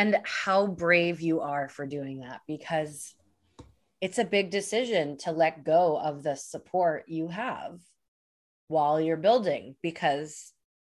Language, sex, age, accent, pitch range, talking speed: English, female, 20-39, American, 160-210 Hz, 140 wpm